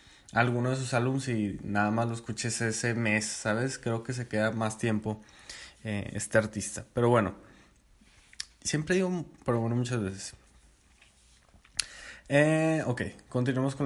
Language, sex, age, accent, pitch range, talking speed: Spanish, male, 20-39, Mexican, 110-135 Hz, 145 wpm